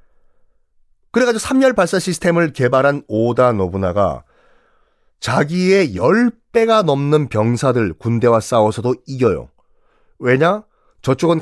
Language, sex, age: Korean, male, 40-59